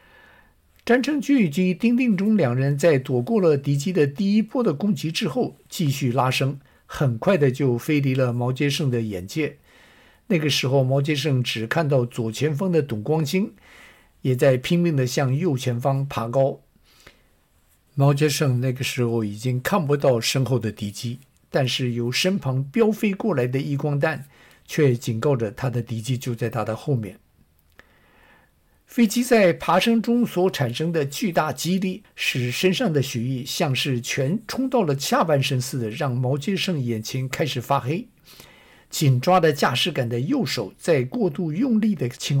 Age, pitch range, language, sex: 50-69, 125-170 Hz, Chinese, male